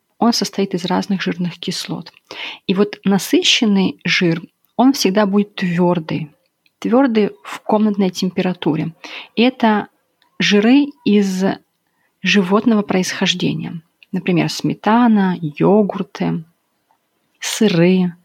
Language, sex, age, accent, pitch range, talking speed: Russian, female, 30-49, native, 170-205 Hz, 90 wpm